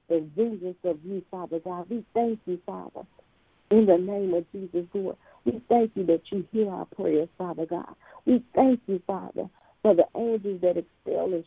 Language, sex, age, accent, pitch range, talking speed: English, female, 50-69, American, 175-220 Hz, 190 wpm